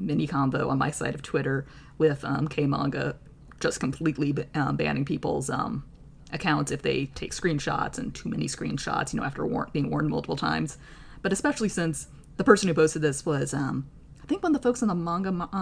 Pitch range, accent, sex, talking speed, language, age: 150-185 Hz, American, female, 210 wpm, English, 20-39